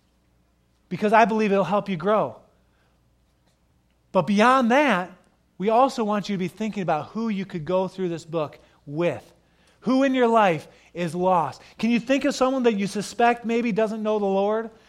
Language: English